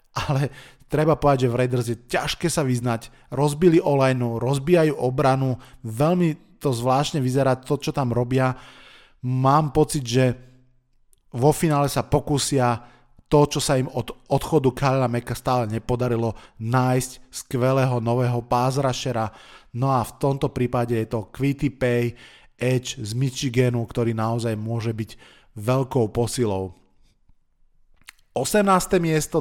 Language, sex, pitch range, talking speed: Slovak, male, 125-145 Hz, 130 wpm